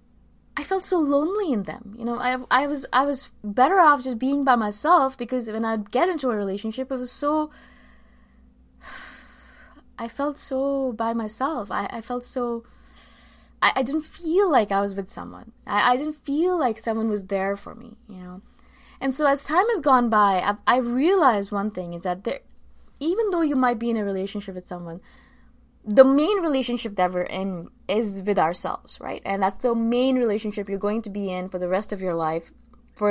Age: 20-39